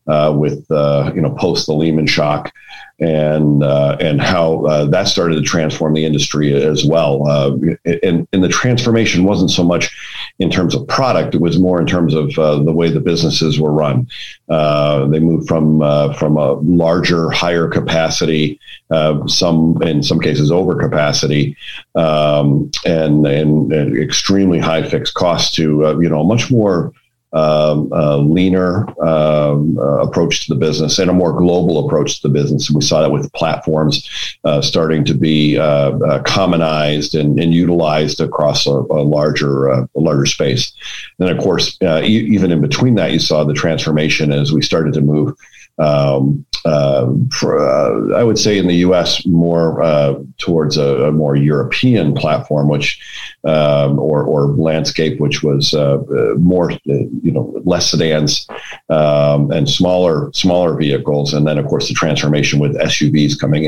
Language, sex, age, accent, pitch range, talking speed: English, male, 50-69, American, 75-85 Hz, 175 wpm